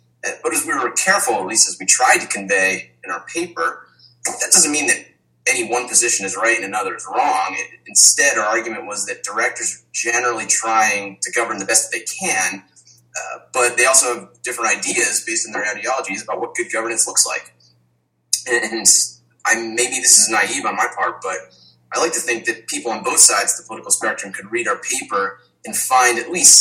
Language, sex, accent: English, male, American